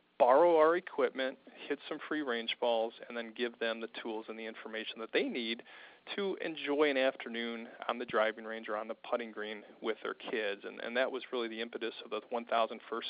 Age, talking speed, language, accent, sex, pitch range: 40-59, 215 wpm, English, American, male, 115-140 Hz